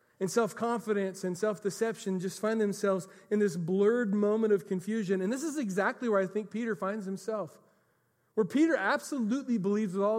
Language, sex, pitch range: English, male, 175-230 Hz